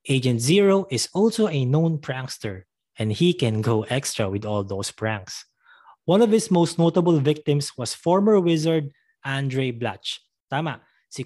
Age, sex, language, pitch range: 20-39, male, English, 120-170 Hz